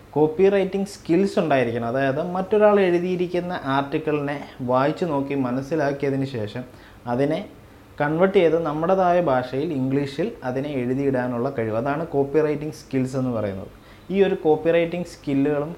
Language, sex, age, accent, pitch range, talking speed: Malayalam, male, 20-39, native, 125-155 Hz, 115 wpm